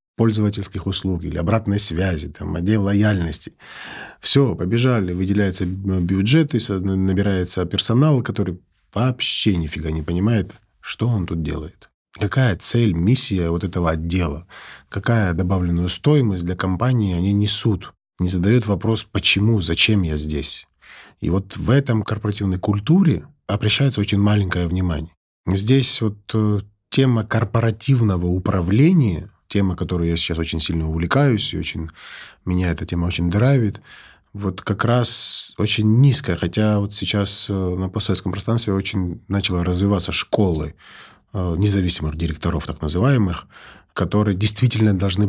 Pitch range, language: 90-110 Hz, Russian